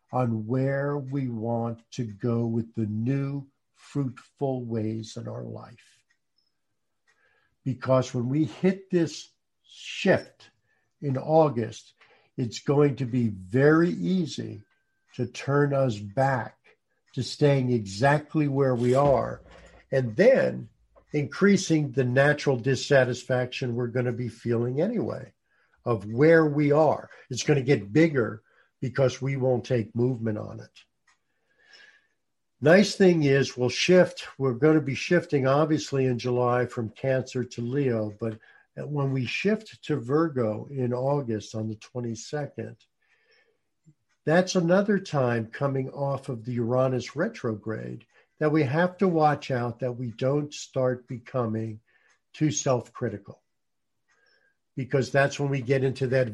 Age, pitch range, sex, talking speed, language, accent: 60-79, 120-145 Hz, male, 130 wpm, English, American